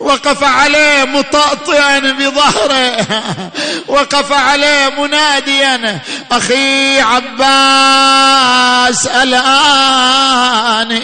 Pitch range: 255-280 Hz